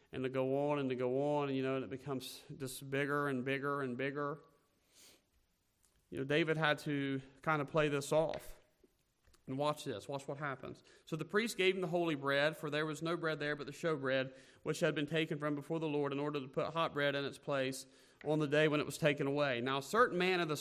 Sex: male